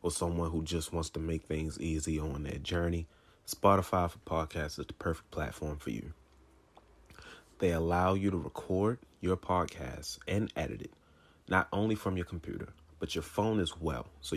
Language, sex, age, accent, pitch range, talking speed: English, male, 30-49, American, 75-95 Hz, 175 wpm